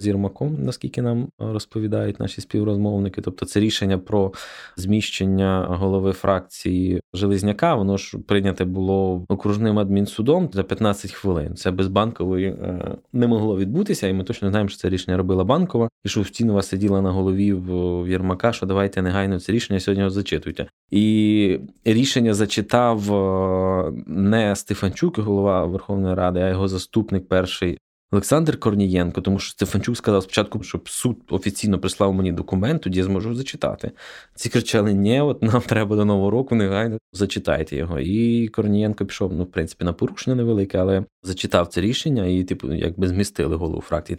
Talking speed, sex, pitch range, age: 155 wpm, male, 95-110 Hz, 20-39